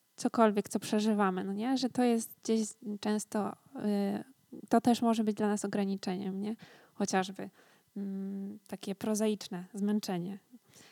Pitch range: 200-225 Hz